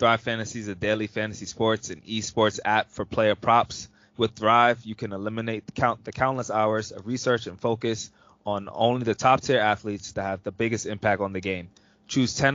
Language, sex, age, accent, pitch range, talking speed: English, male, 20-39, American, 105-120 Hz, 190 wpm